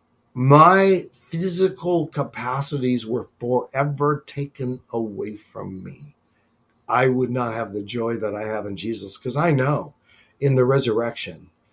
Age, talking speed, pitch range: 50-69, 135 wpm, 120-155 Hz